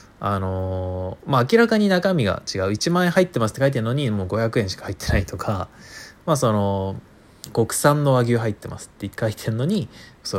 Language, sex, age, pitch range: Japanese, male, 20-39, 95-125 Hz